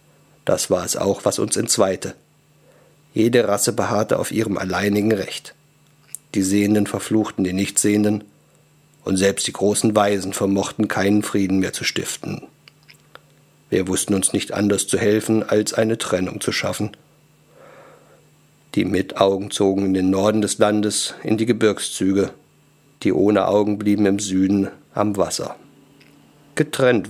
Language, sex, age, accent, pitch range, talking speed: German, male, 50-69, German, 95-110 Hz, 135 wpm